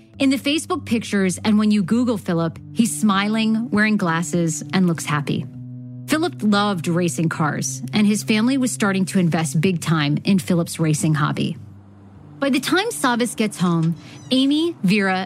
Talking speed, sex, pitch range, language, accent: 160 wpm, female, 165-225 Hz, English, American